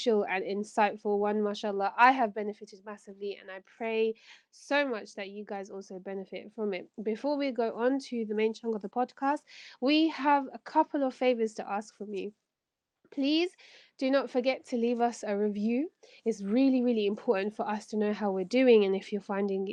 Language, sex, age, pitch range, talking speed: English, female, 20-39, 205-250 Hz, 200 wpm